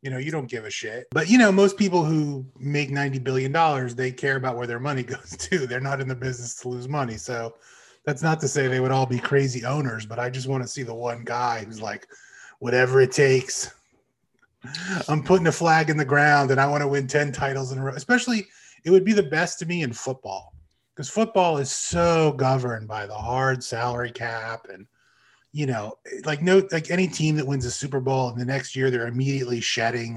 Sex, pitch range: male, 120-145 Hz